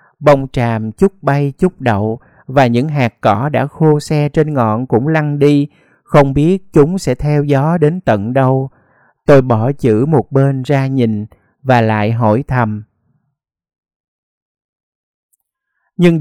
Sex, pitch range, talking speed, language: male, 120-155 Hz, 145 wpm, Vietnamese